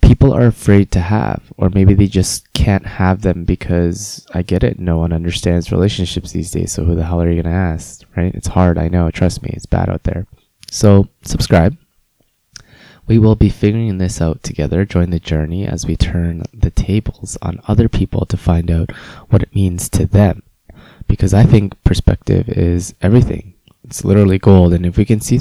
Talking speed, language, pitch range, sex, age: 200 wpm, English, 85-105 Hz, male, 20-39